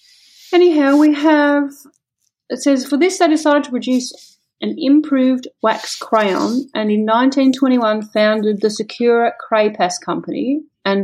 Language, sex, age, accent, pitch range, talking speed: English, female, 30-49, Australian, 200-270 Hz, 135 wpm